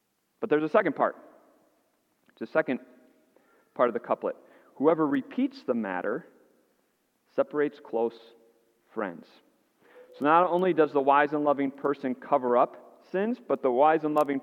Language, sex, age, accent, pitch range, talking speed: English, male, 40-59, American, 120-175 Hz, 150 wpm